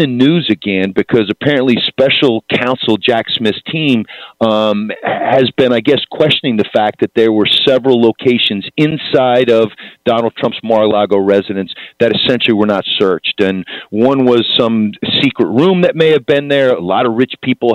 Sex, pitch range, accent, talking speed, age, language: male, 105-130 Hz, American, 170 wpm, 40-59, English